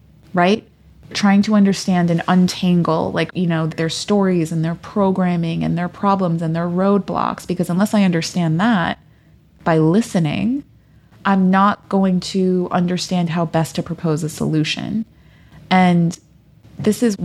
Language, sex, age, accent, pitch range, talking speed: English, female, 20-39, American, 160-190 Hz, 145 wpm